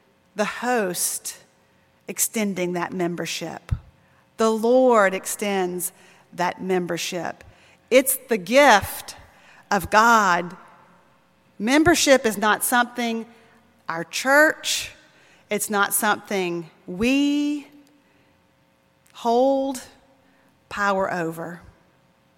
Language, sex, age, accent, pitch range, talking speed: English, female, 40-59, American, 180-240 Hz, 75 wpm